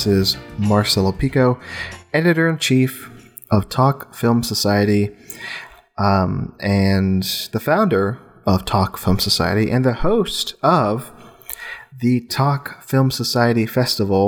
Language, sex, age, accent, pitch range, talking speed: English, male, 30-49, American, 100-130 Hz, 105 wpm